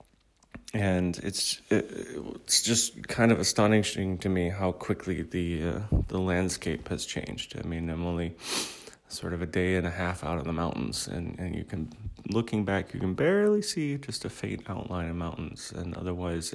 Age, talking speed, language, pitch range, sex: 30-49, 180 wpm, English, 90-105 Hz, male